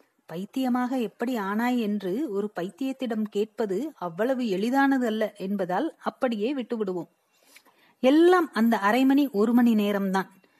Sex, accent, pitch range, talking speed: female, native, 210-280 Hz, 110 wpm